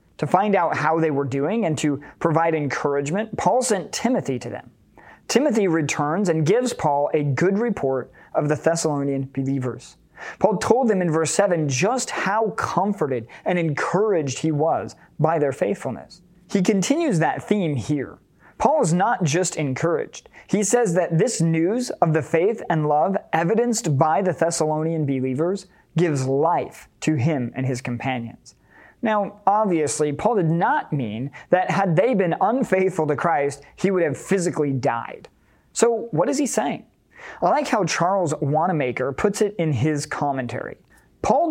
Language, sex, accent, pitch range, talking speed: English, male, American, 150-195 Hz, 160 wpm